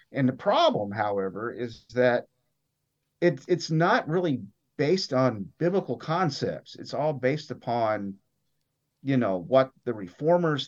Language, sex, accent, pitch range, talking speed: English, male, American, 105-145 Hz, 130 wpm